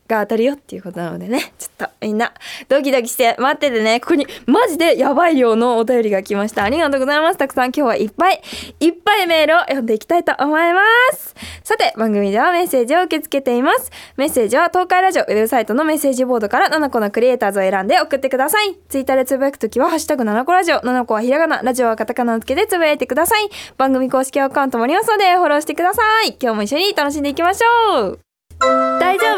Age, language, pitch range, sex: 20-39, Japanese, 225-340 Hz, female